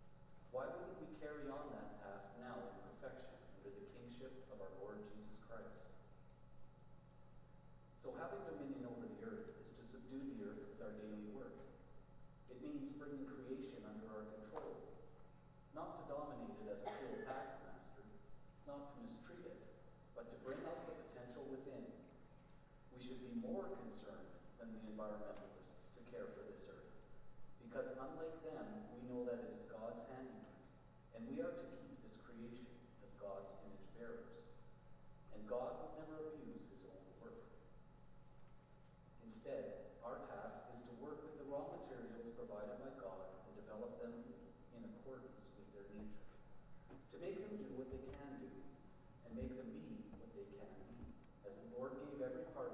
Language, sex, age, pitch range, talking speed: English, male, 40-59, 95-135 Hz, 165 wpm